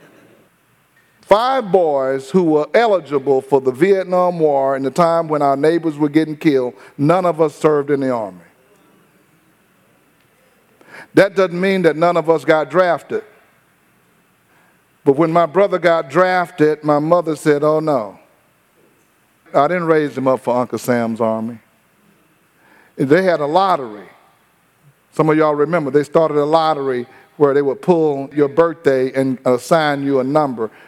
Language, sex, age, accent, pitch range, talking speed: English, male, 50-69, American, 135-180 Hz, 150 wpm